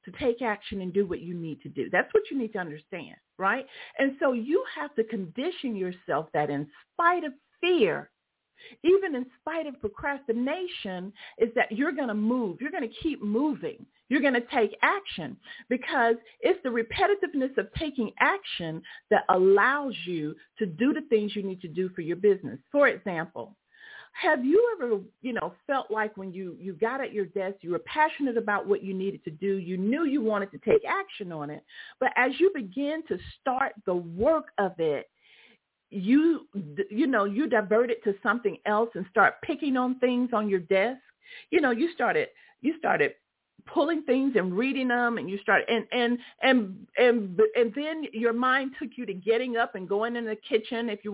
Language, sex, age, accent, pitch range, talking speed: English, female, 50-69, American, 210-295 Hz, 190 wpm